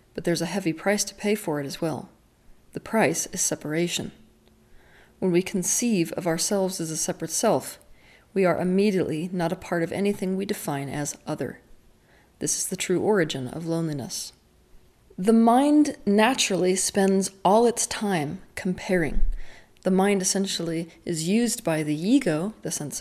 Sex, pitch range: female, 170-205 Hz